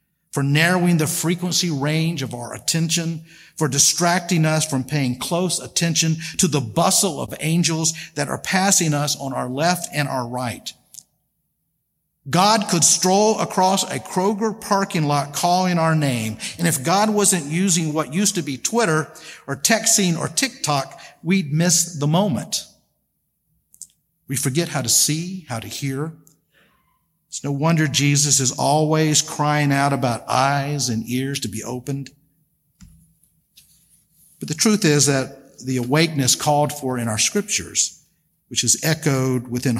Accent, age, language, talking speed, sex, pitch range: American, 50-69, English, 150 wpm, male, 135-170 Hz